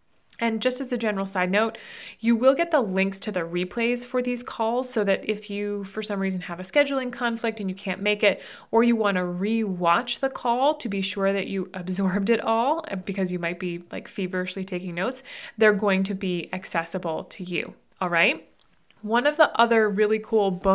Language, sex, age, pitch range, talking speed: English, female, 30-49, 190-235 Hz, 215 wpm